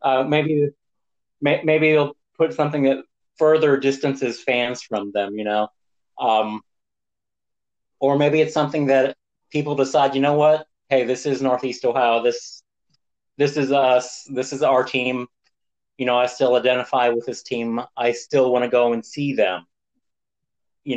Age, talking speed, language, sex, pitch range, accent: 30-49, 155 wpm, English, male, 120-145 Hz, American